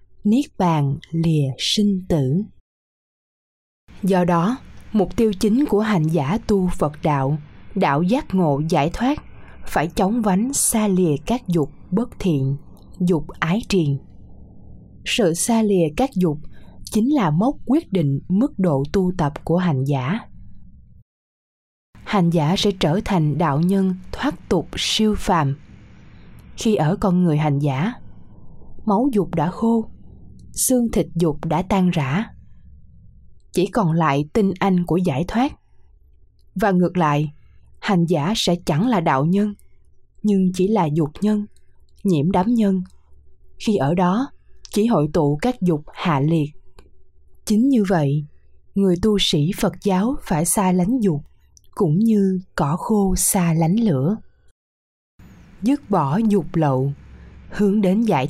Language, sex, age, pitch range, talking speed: Vietnamese, female, 20-39, 150-205 Hz, 145 wpm